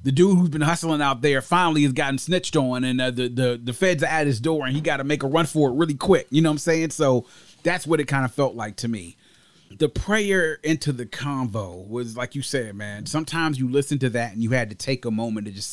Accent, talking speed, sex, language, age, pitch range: American, 275 wpm, male, English, 30-49, 125-160 Hz